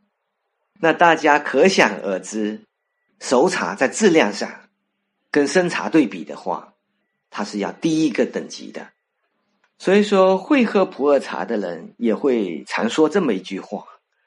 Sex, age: male, 50-69